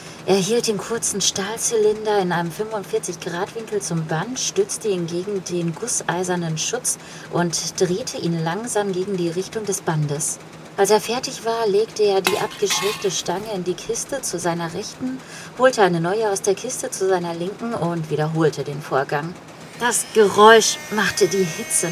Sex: female